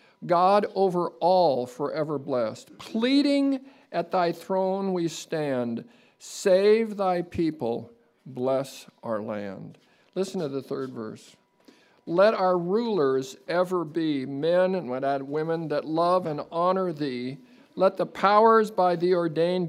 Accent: American